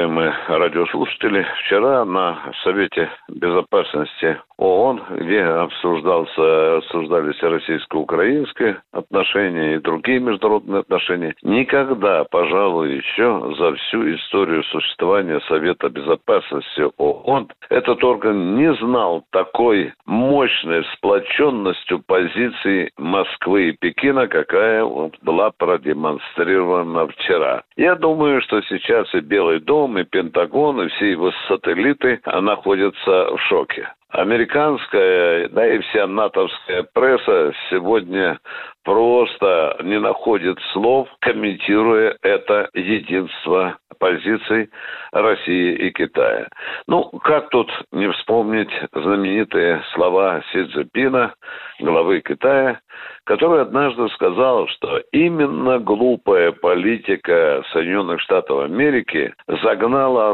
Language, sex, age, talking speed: Russian, male, 60-79, 95 wpm